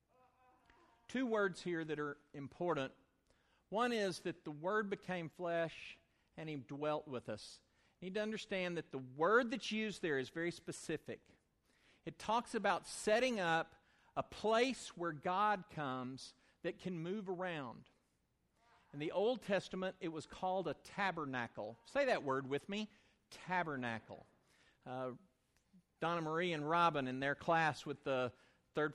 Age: 50-69